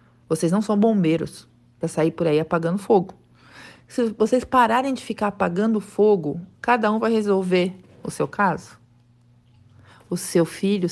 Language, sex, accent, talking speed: Portuguese, female, Brazilian, 150 wpm